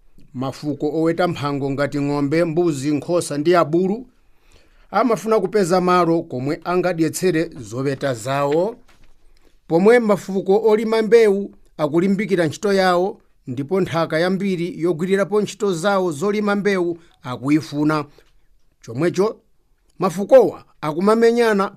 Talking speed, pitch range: 95 wpm, 150-190 Hz